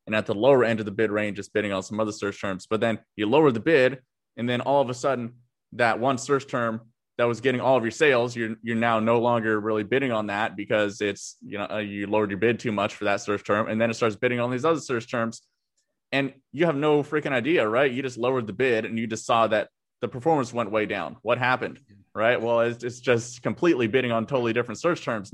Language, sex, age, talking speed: English, male, 20-39, 255 wpm